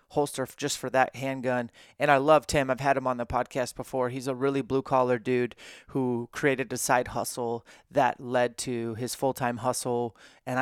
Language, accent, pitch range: English, American, 130-145 Hz